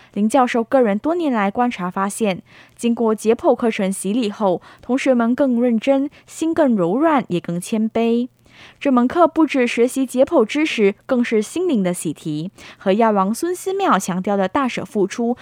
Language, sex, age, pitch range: Chinese, female, 10-29, 195-270 Hz